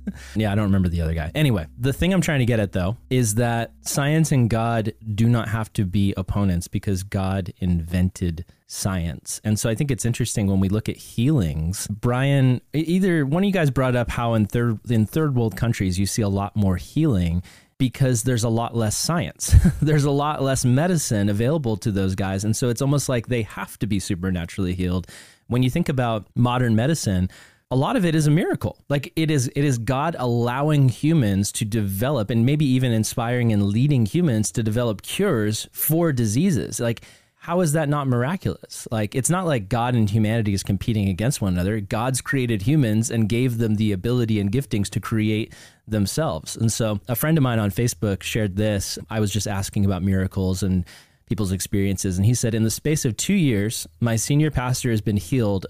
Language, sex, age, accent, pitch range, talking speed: English, male, 20-39, American, 100-130 Hz, 205 wpm